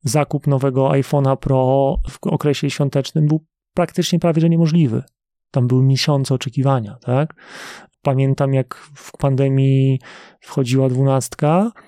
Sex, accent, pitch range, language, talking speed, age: male, native, 125-155 Hz, Polish, 115 wpm, 30-49